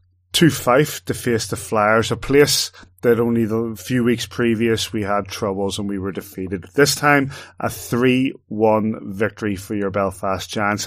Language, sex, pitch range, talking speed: English, male, 100-120 Hz, 165 wpm